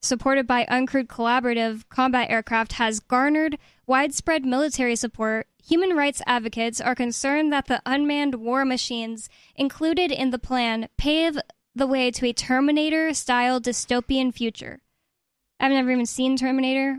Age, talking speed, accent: 10-29, 135 wpm, American